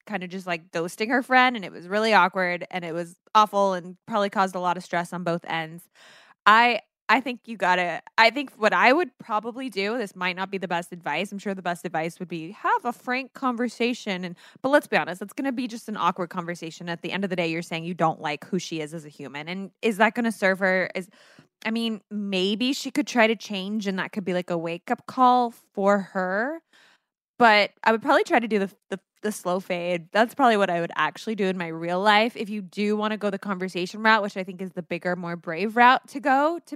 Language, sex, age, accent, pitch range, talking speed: English, female, 20-39, American, 180-230 Hz, 260 wpm